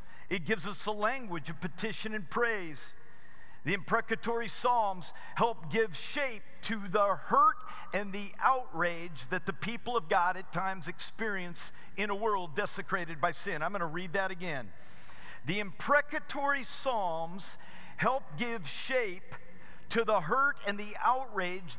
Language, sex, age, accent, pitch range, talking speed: English, male, 50-69, American, 180-230 Hz, 145 wpm